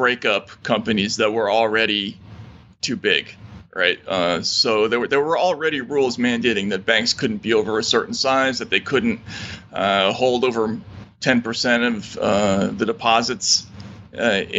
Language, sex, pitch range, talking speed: English, male, 110-135 Hz, 160 wpm